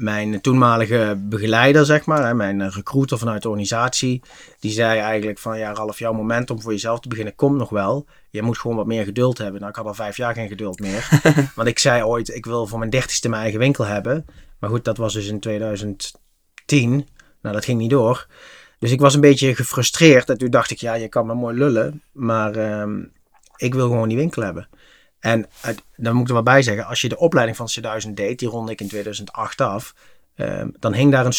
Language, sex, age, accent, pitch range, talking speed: Dutch, male, 30-49, Dutch, 110-125 Hz, 220 wpm